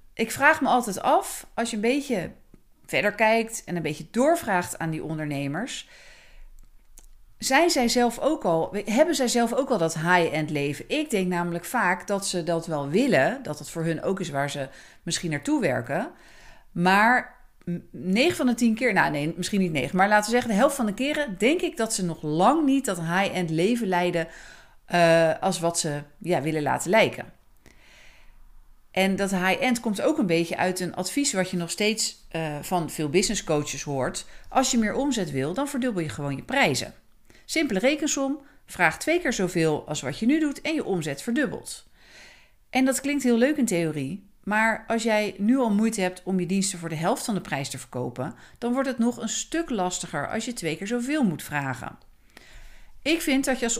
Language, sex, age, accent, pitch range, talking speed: Dutch, female, 40-59, Dutch, 165-245 Hz, 200 wpm